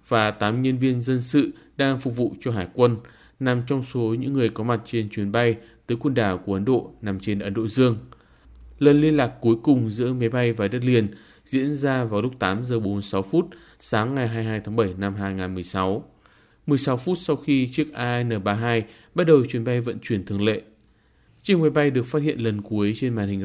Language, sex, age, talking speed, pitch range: Vietnamese, male, 20-39, 215 wpm, 105-130 Hz